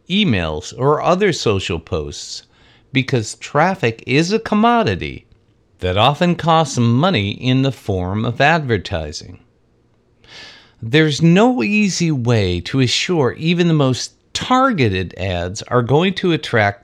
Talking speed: 120 wpm